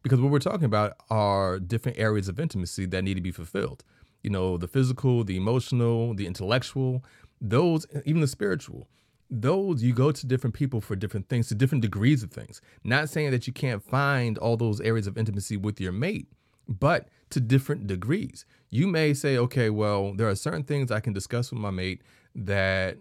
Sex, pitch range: male, 100-130 Hz